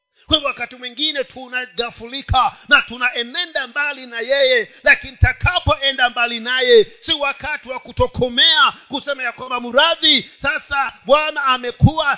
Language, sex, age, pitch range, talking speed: Swahili, male, 50-69, 230-335 Hz, 125 wpm